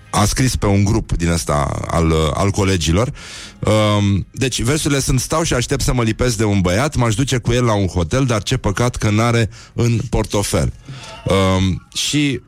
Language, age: Romanian, 30-49